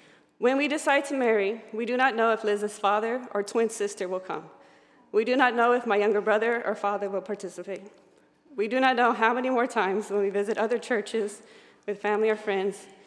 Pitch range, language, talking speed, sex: 200-230 Hz, English, 210 wpm, female